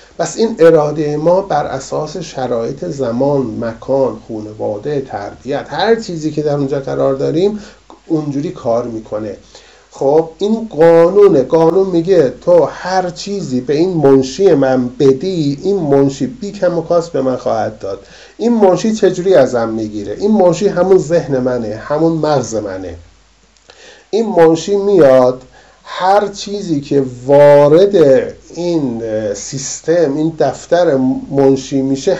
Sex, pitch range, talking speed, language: male, 130-185 Hz, 130 wpm, Persian